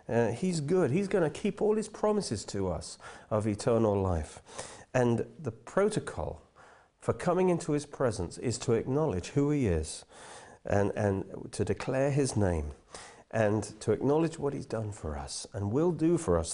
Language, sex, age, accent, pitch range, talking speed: English, male, 40-59, British, 100-160 Hz, 170 wpm